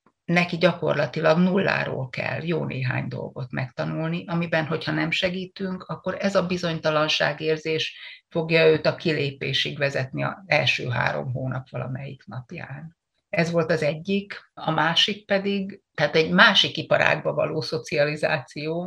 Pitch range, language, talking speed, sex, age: 140-170 Hz, Hungarian, 125 wpm, female, 60-79